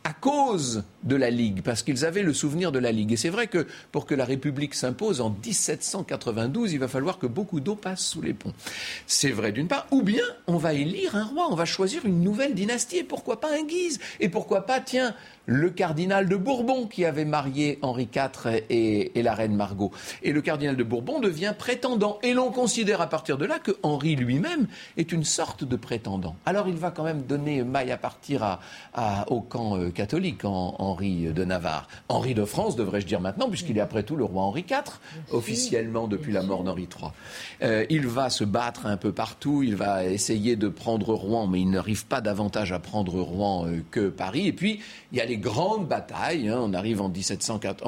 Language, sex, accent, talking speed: French, male, French, 215 wpm